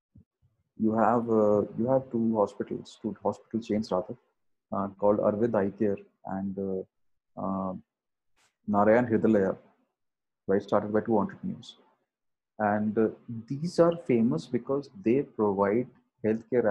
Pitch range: 105-120 Hz